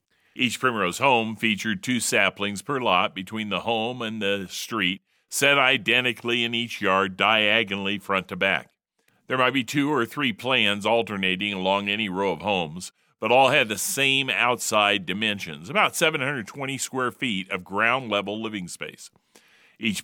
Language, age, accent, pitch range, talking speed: English, 50-69, American, 100-125 Hz, 155 wpm